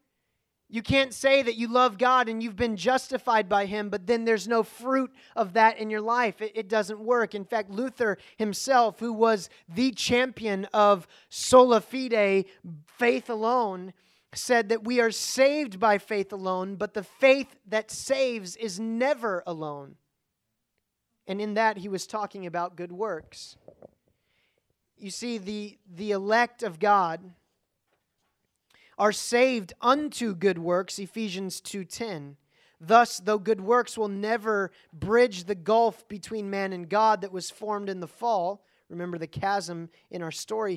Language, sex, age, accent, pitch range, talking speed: English, male, 30-49, American, 185-230 Hz, 155 wpm